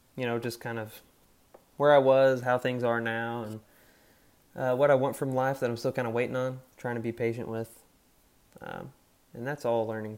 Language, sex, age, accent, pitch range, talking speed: English, male, 20-39, American, 115-135 Hz, 220 wpm